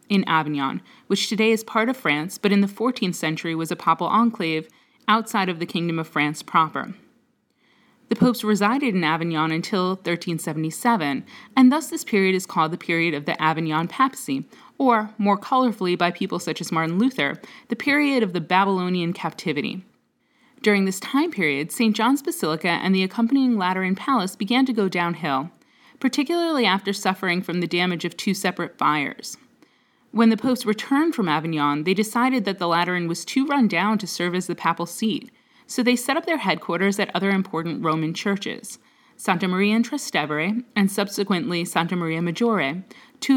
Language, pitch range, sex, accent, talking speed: English, 170-240 Hz, female, American, 175 wpm